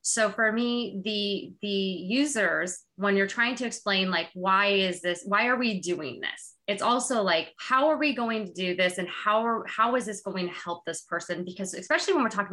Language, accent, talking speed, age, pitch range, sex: English, American, 220 wpm, 20-39, 175-220 Hz, female